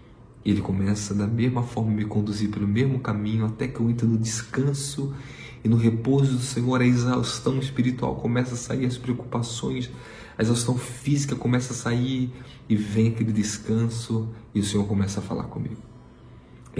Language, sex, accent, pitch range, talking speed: Portuguese, male, Brazilian, 115-130 Hz, 170 wpm